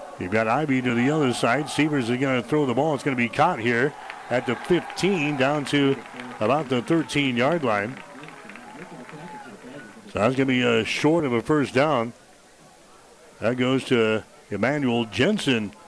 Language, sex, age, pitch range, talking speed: English, male, 60-79, 125-155 Hz, 170 wpm